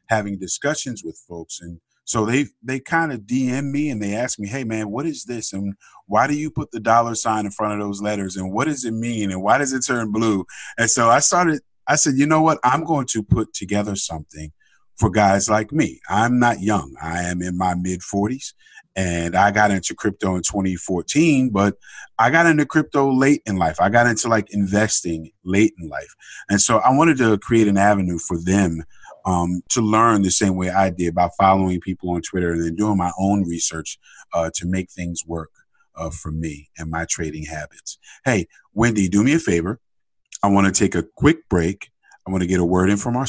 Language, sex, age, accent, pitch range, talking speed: English, male, 30-49, American, 90-115 Hz, 220 wpm